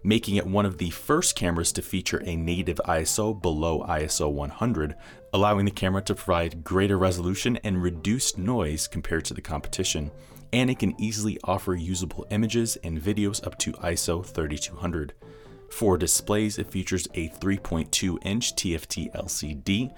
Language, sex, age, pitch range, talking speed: English, male, 30-49, 85-105 Hz, 155 wpm